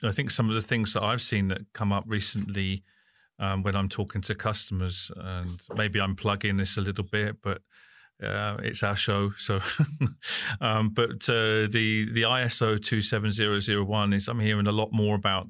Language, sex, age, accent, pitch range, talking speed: English, male, 40-59, British, 95-105 Hz, 180 wpm